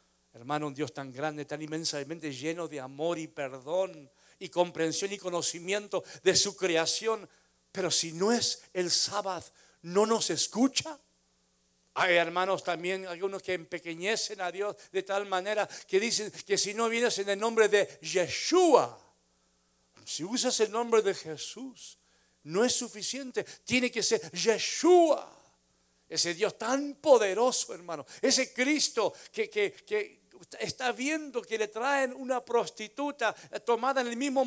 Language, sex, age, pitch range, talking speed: Spanish, male, 60-79, 155-240 Hz, 145 wpm